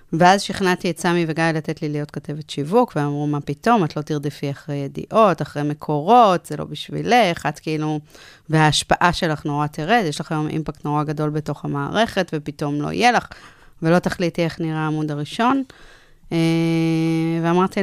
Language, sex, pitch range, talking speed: Hebrew, female, 155-180 Hz, 165 wpm